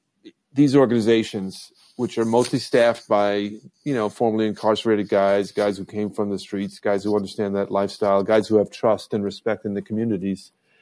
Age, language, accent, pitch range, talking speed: 50-69, English, American, 100-130 Hz, 175 wpm